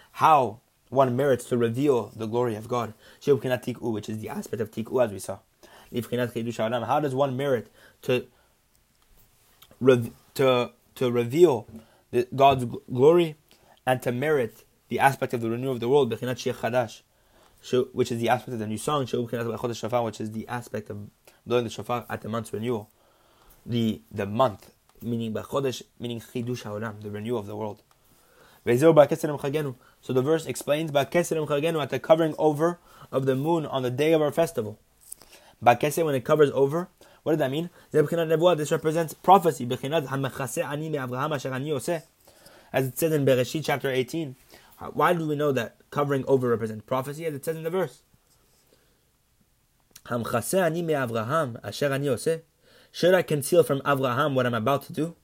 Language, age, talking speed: English, 20-39, 150 wpm